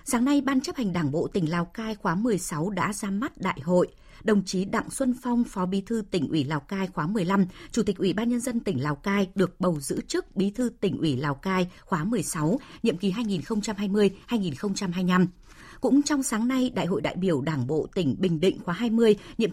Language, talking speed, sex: Vietnamese, 220 wpm, female